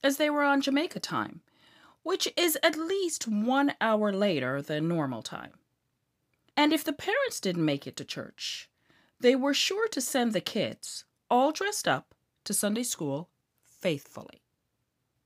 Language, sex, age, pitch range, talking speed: English, female, 40-59, 160-270 Hz, 155 wpm